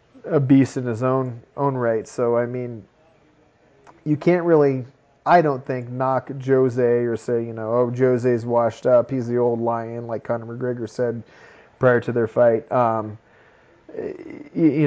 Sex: male